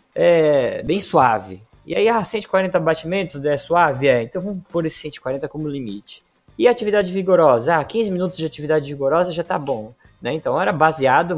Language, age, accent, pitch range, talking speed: Portuguese, 20-39, Brazilian, 120-165 Hz, 180 wpm